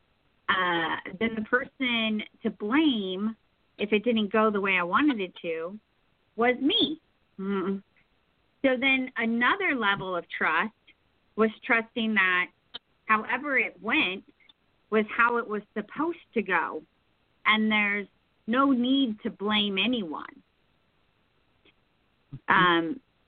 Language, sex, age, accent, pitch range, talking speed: English, female, 30-49, American, 195-240 Hz, 120 wpm